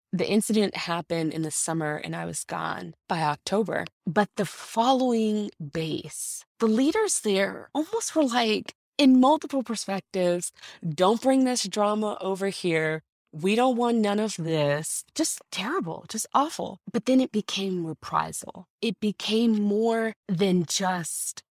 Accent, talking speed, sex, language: American, 140 wpm, female, English